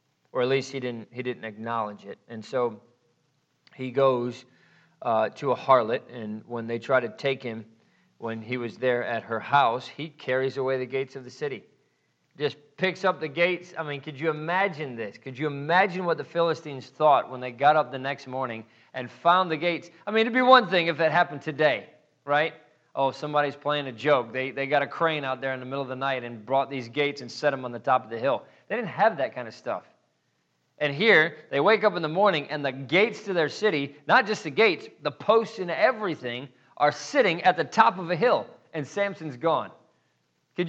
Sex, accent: male, American